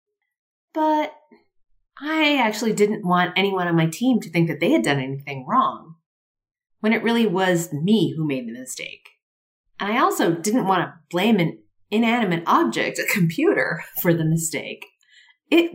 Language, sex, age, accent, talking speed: English, female, 40-59, American, 160 wpm